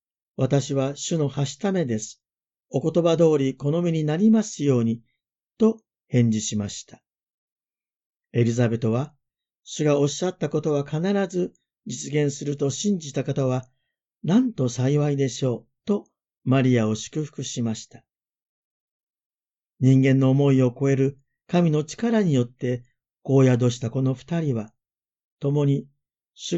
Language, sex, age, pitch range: Japanese, male, 50-69, 120-165 Hz